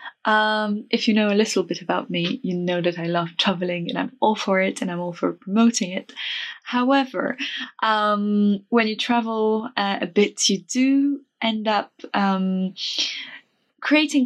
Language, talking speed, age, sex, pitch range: English, 170 wpm, 10-29, female, 180-235 Hz